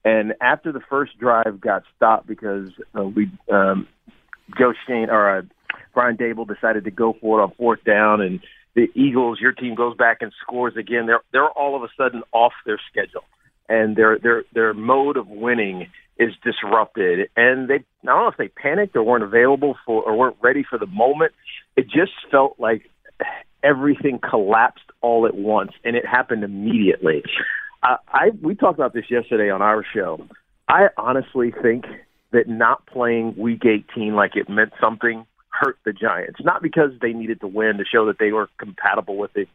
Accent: American